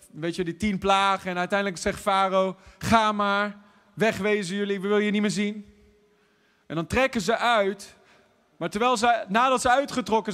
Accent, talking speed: Dutch, 175 wpm